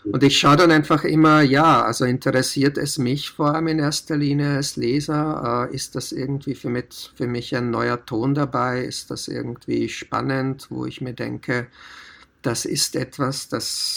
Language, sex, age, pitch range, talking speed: Slovak, male, 50-69, 120-140 Hz, 175 wpm